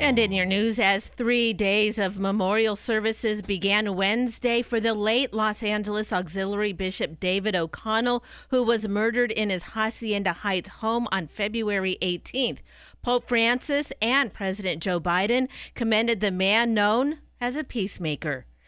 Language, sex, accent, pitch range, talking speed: English, female, American, 185-225 Hz, 145 wpm